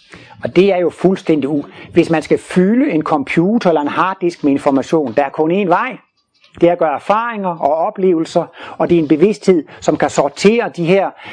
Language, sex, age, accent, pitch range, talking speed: Danish, male, 60-79, native, 150-205 Hz, 205 wpm